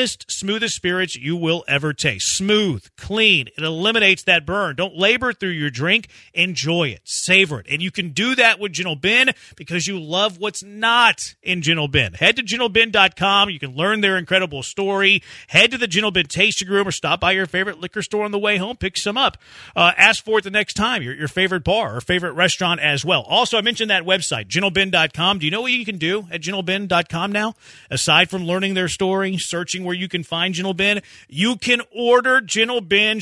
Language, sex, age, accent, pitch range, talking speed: English, male, 40-59, American, 160-205 Hz, 210 wpm